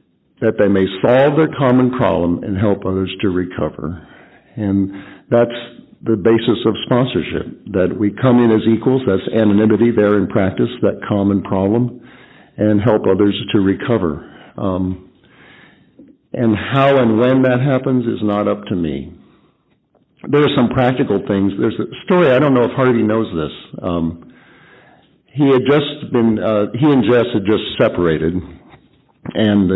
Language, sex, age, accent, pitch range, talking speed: English, male, 50-69, American, 95-115 Hz, 155 wpm